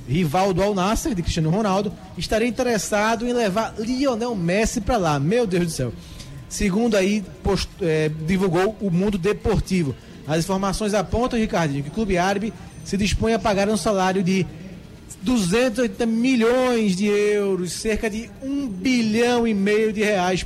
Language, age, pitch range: Portuguese, 20-39, 170-220 Hz